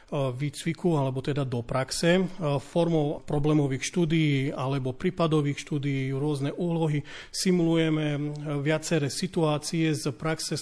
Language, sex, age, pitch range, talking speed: Slovak, male, 40-59, 145-165 Hz, 105 wpm